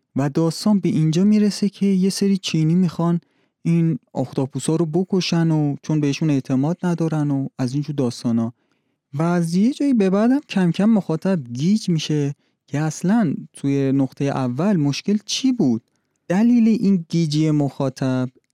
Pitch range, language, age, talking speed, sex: 125-165 Hz, Persian, 30-49, 145 wpm, male